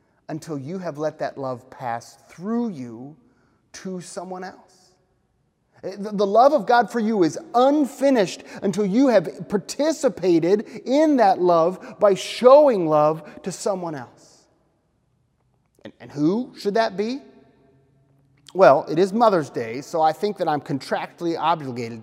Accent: American